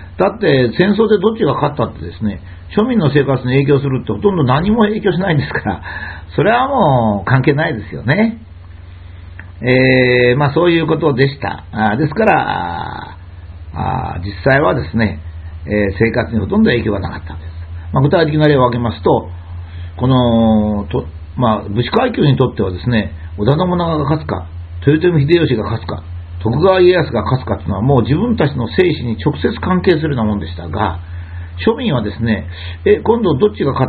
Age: 50-69